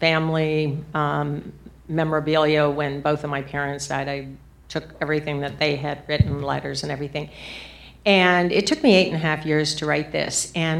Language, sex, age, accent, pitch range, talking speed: English, female, 50-69, American, 150-180 Hz, 180 wpm